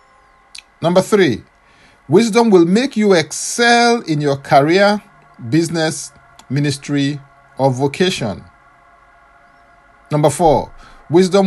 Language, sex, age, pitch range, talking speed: English, male, 50-69, 135-195 Hz, 90 wpm